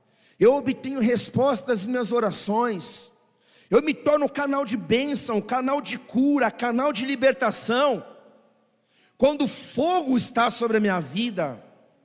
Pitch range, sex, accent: 215-280 Hz, male, Brazilian